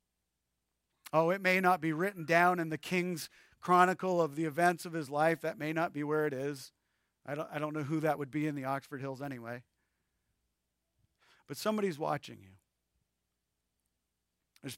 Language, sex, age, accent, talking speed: English, male, 40-59, American, 170 wpm